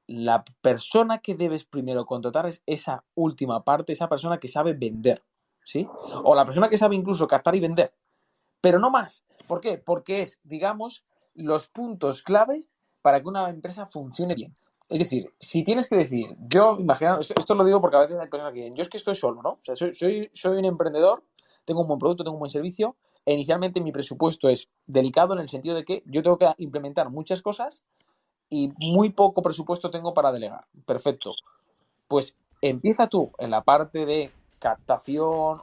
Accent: Spanish